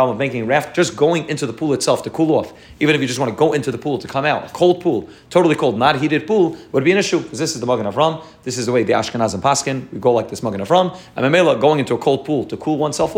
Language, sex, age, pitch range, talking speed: English, male, 30-49, 125-165 Hz, 315 wpm